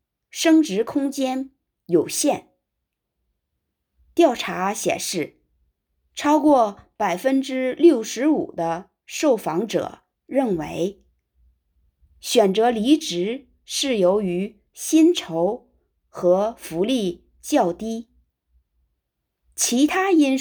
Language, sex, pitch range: Chinese, female, 180-290 Hz